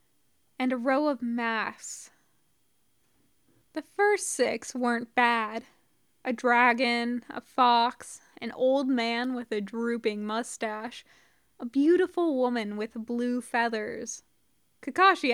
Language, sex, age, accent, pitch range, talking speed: English, female, 20-39, American, 225-255 Hz, 110 wpm